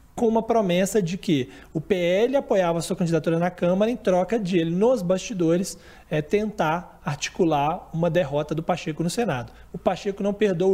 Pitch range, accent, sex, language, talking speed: 160-205 Hz, Brazilian, male, Portuguese, 170 wpm